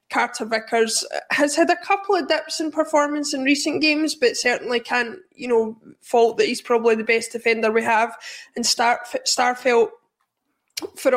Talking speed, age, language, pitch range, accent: 165 wpm, 20-39, English, 225-275 Hz, British